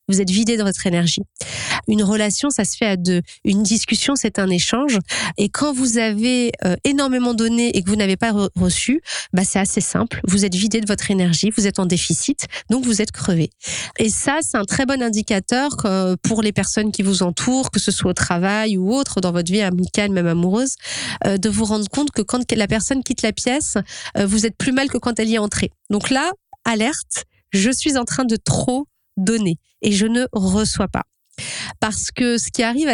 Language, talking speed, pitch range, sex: French, 220 wpm, 195-235 Hz, female